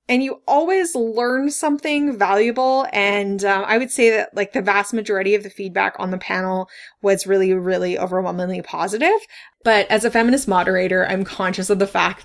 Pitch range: 180-205 Hz